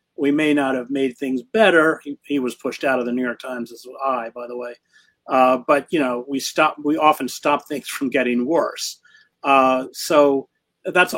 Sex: male